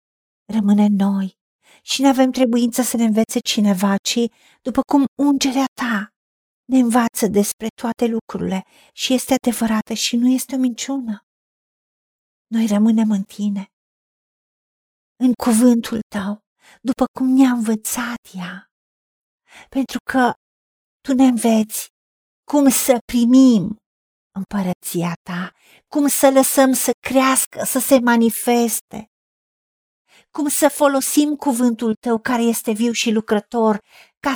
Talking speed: 120 wpm